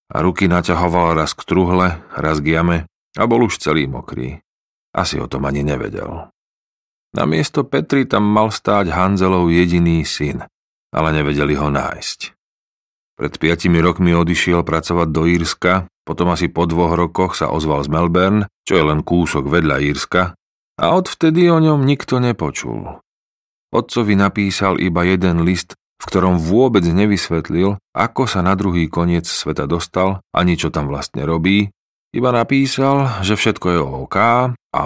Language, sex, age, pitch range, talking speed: Slovak, male, 40-59, 80-100 Hz, 150 wpm